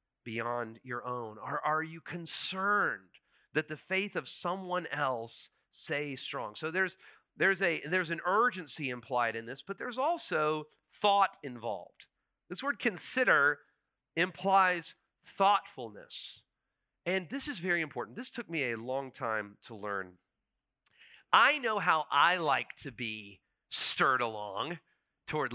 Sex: male